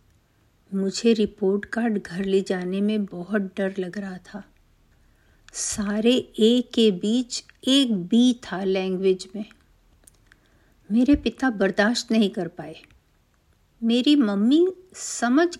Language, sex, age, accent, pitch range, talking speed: Hindi, female, 50-69, native, 195-245 Hz, 115 wpm